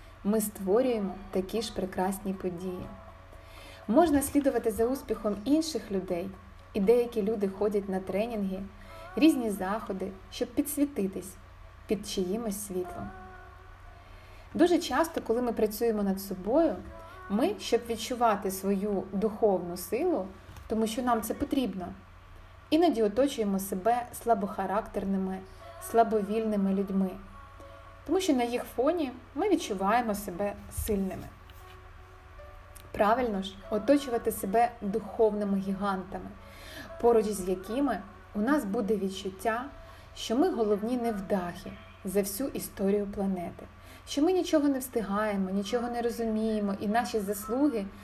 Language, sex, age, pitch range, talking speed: Ukrainian, female, 20-39, 185-235 Hz, 110 wpm